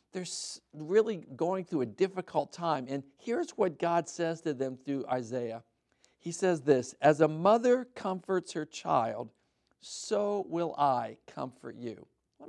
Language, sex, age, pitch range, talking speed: English, male, 50-69, 135-195 Hz, 150 wpm